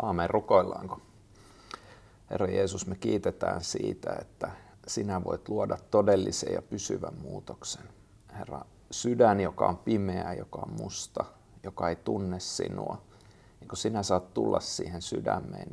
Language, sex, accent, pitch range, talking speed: Finnish, male, native, 90-105 Hz, 130 wpm